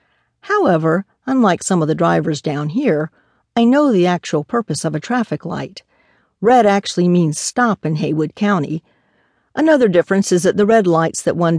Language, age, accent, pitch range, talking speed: English, 50-69, American, 155-220 Hz, 170 wpm